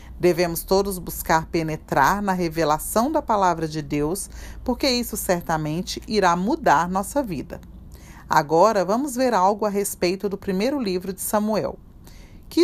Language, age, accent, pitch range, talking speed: Portuguese, 40-59, Brazilian, 165-225 Hz, 140 wpm